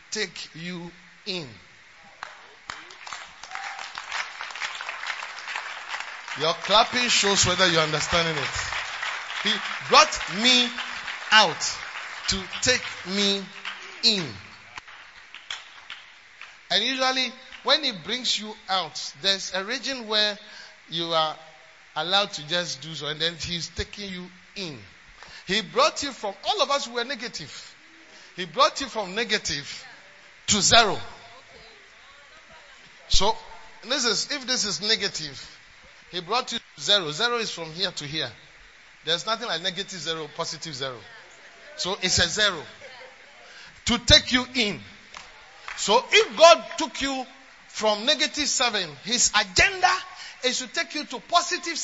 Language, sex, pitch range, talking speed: English, male, 170-255 Hz, 125 wpm